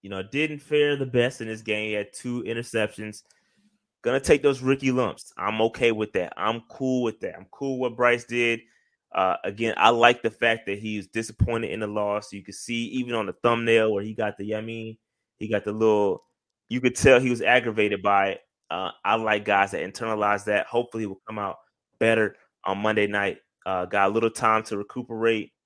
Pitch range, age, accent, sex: 105-115 Hz, 20-39, American, male